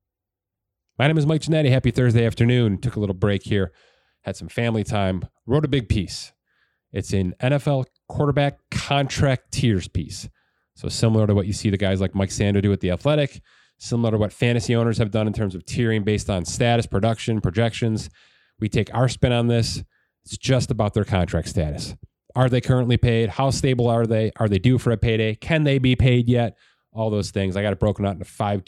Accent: American